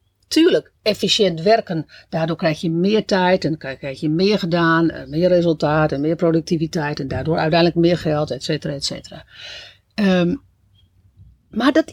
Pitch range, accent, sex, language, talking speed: 165-240 Hz, Dutch, female, Dutch, 145 wpm